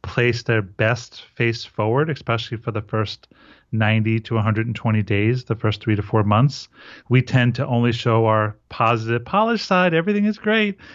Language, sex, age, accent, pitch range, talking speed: English, male, 30-49, American, 110-135 Hz, 170 wpm